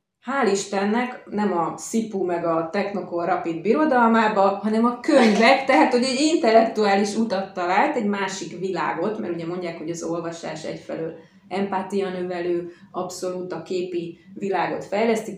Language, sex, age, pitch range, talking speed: Hungarian, female, 30-49, 175-215 Hz, 140 wpm